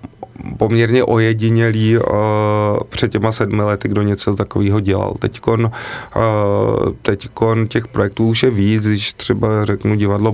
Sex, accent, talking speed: male, native, 120 wpm